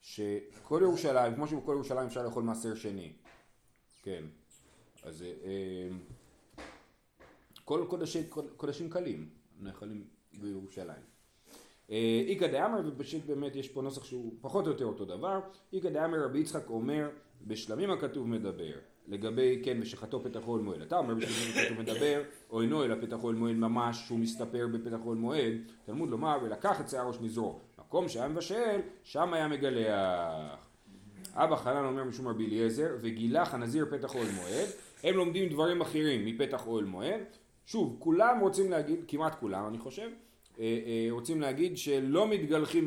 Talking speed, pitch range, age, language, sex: 145 wpm, 115-170 Hz, 30-49, Hebrew, male